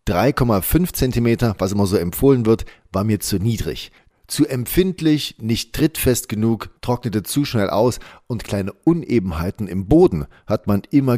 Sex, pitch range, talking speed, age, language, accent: male, 100-130 Hz, 150 wpm, 40-59, German, German